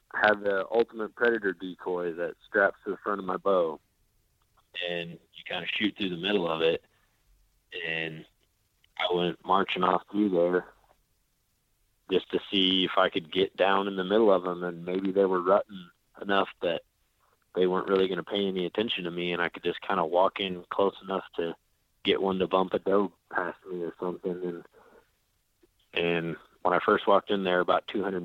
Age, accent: 20-39, American